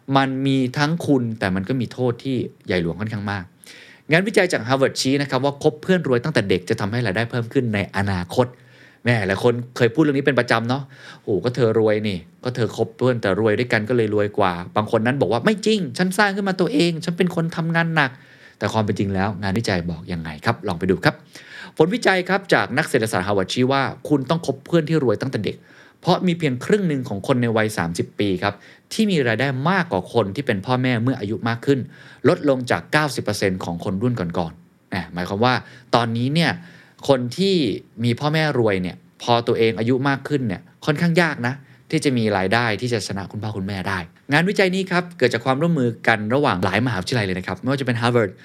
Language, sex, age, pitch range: Thai, male, 30-49, 105-145 Hz